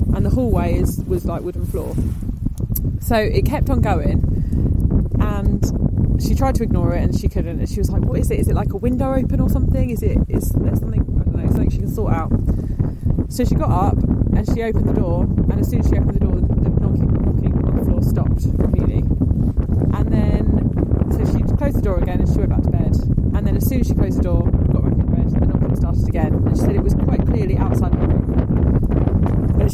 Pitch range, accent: 85-105 Hz, British